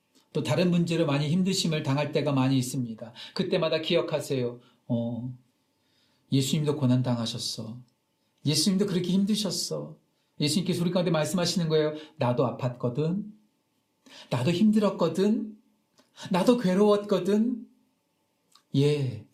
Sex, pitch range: male, 130-185 Hz